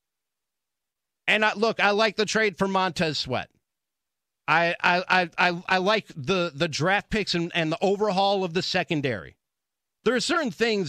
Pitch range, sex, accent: 175-225 Hz, male, American